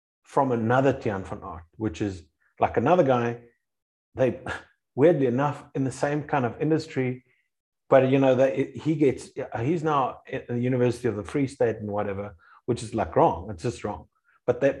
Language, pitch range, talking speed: English, 105-130 Hz, 180 wpm